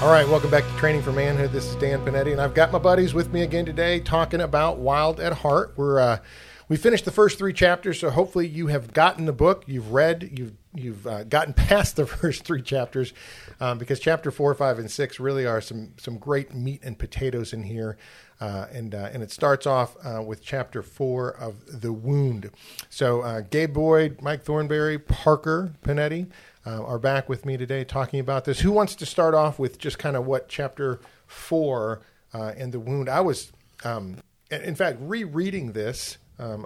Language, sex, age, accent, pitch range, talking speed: English, male, 40-59, American, 115-155 Hz, 200 wpm